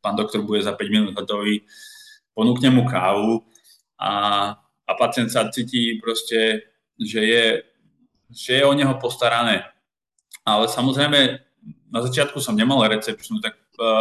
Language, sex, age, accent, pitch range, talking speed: Czech, male, 20-39, native, 115-140 Hz, 130 wpm